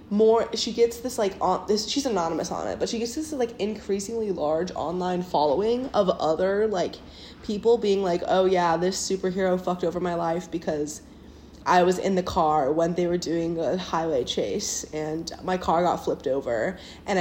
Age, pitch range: 20-39, 175-225 Hz